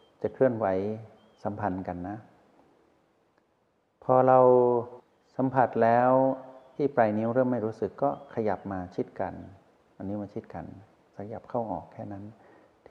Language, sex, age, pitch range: Thai, male, 60-79, 95-115 Hz